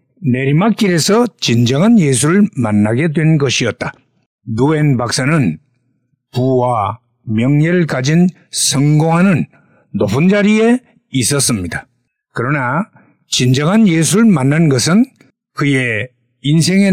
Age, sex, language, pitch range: 60-79, male, Korean, 130-190 Hz